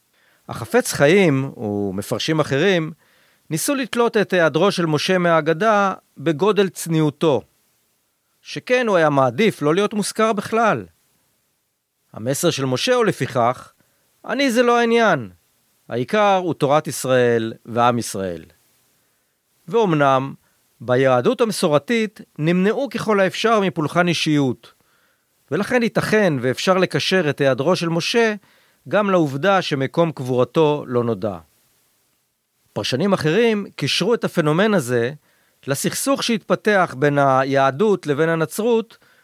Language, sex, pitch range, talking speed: Hebrew, male, 135-200 Hz, 105 wpm